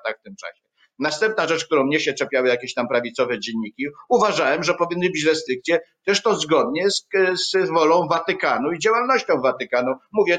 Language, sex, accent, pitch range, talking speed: Polish, male, native, 125-175 Hz, 175 wpm